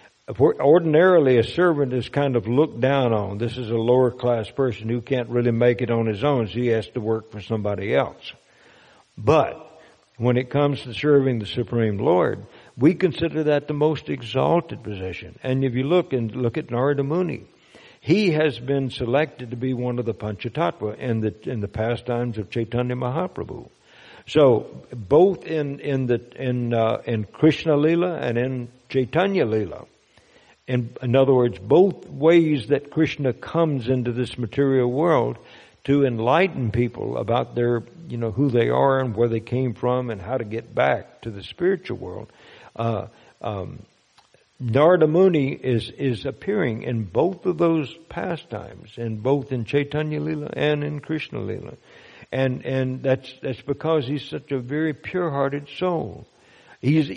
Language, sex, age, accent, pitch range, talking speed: English, male, 60-79, American, 120-150 Hz, 165 wpm